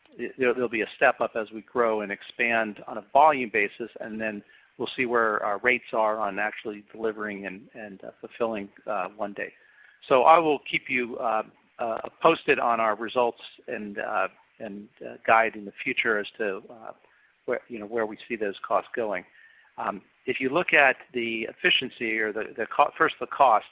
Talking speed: 195 wpm